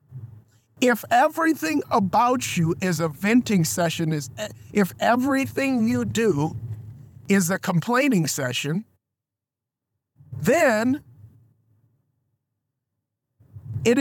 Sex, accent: male, American